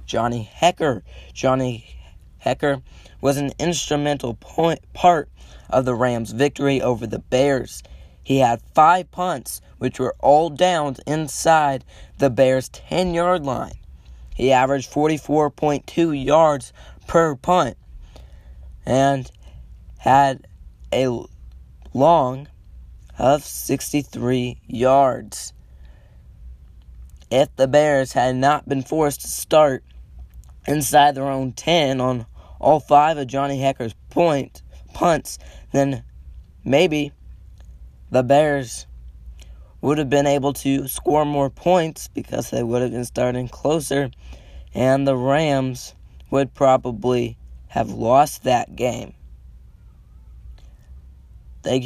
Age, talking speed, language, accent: 20-39, 110 wpm, English, American